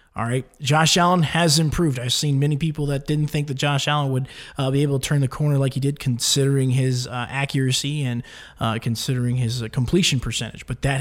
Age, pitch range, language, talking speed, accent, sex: 20-39, 125-150 Hz, English, 220 wpm, American, male